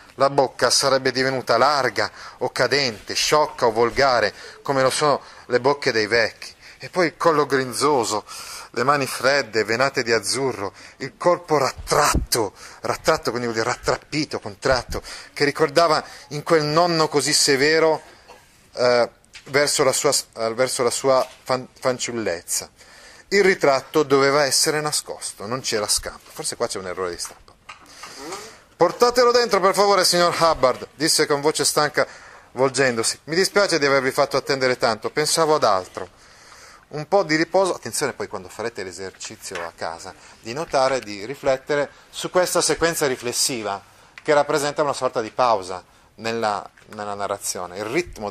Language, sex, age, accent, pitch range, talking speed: Italian, male, 30-49, native, 120-155 Hz, 150 wpm